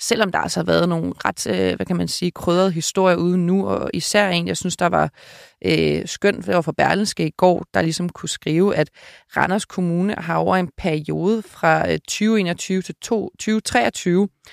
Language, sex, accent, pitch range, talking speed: Danish, female, native, 165-205 Hz, 185 wpm